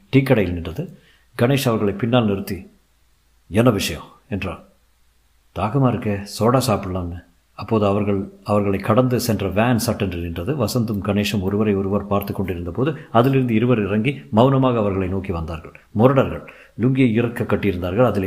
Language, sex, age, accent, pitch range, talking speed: Tamil, male, 50-69, native, 95-125 Hz, 135 wpm